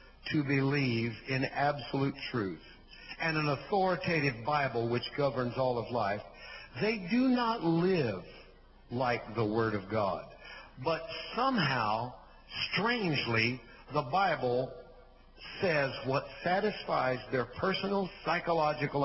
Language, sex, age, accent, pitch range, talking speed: English, male, 60-79, American, 125-180 Hz, 105 wpm